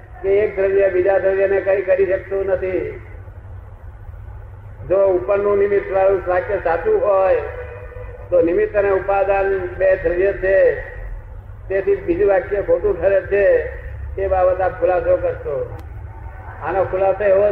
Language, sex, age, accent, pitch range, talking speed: Gujarati, male, 50-69, native, 185-210 Hz, 125 wpm